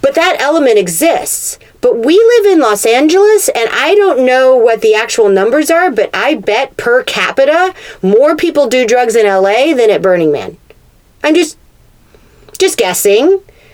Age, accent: 40-59, American